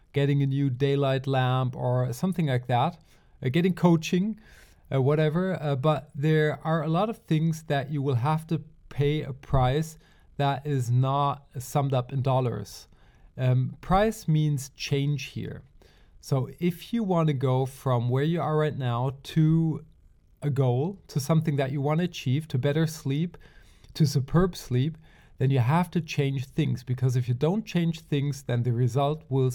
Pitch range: 130-155 Hz